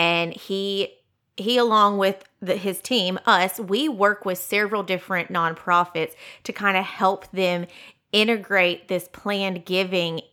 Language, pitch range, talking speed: English, 175-205 Hz, 140 wpm